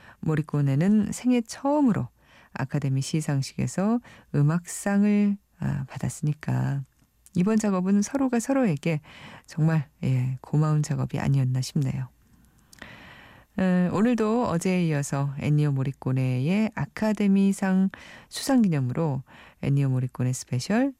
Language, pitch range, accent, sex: Korean, 140-205 Hz, native, female